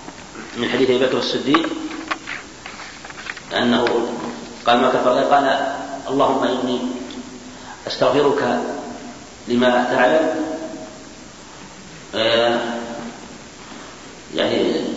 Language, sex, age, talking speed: Arabic, male, 40-59, 70 wpm